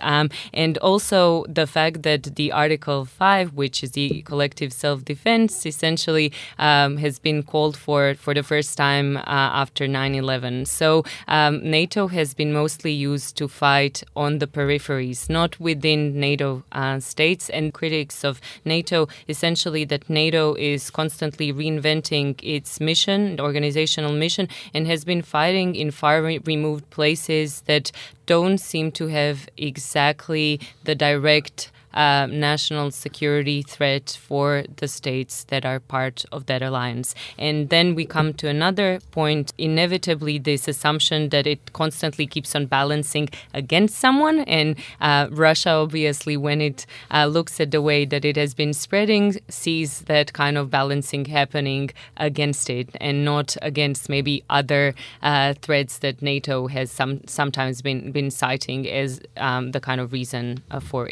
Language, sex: English, female